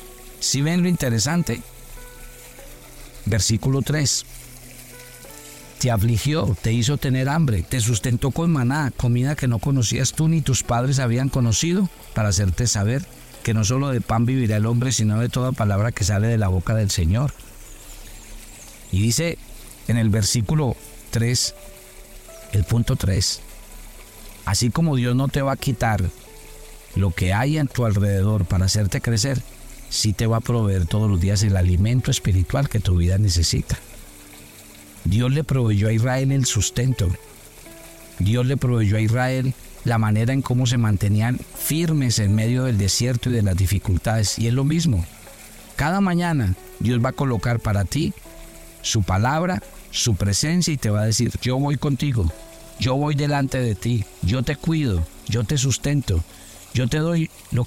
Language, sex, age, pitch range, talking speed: Spanish, male, 50-69, 105-130 Hz, 160 wpm